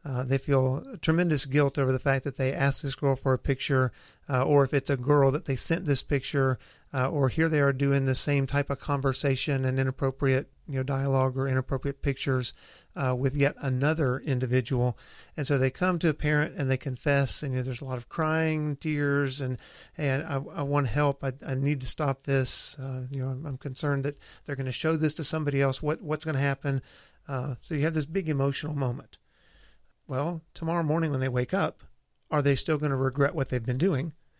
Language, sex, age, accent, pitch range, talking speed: English, male, 50-69, American, 130-145 Hz, 220 wpm